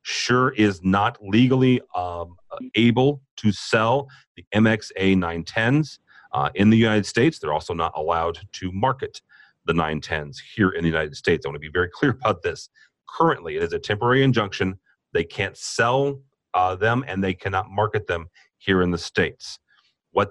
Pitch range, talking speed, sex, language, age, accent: 90-130 Hz, 170 wpm, male, English, 40-59, American